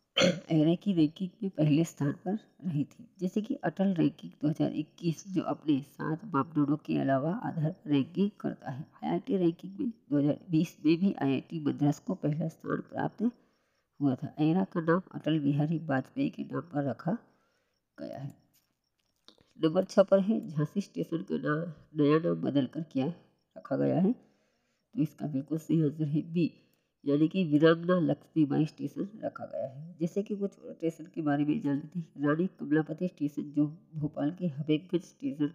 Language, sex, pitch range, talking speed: Hindi, female, 150-190 Hz, 160 wpm